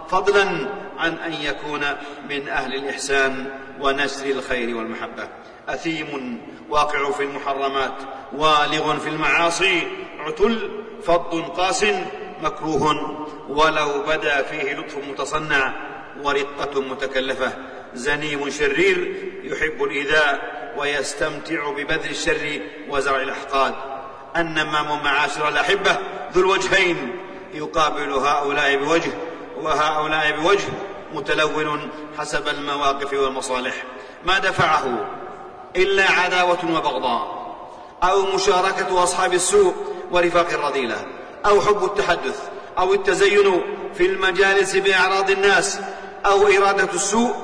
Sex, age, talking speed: male, 50-69, 95 wpm